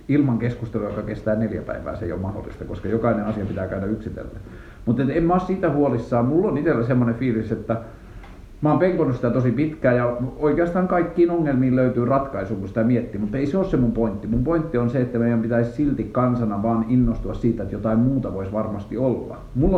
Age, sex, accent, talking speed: 50-69, male, native, 205 wpm